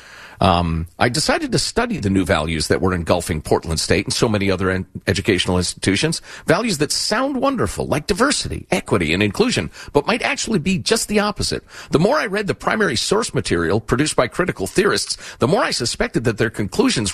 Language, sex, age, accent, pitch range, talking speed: English, male, 50-69, American, 95-155 Hz, 190 wpm